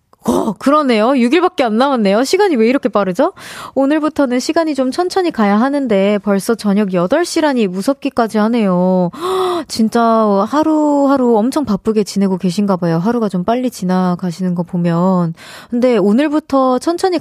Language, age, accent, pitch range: Korean, 20-39, native, 195-285 Hz